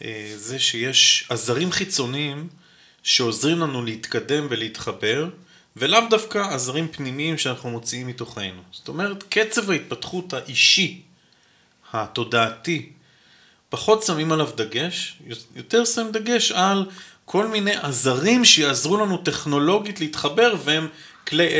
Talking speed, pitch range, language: 105 wpm, 125-170 Hz, Hebrew